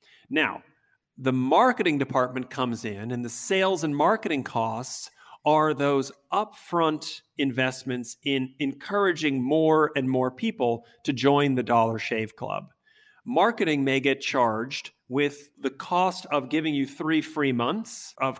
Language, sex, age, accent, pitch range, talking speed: English, male, 40-59, American, 125-155 Hz, 135 wpm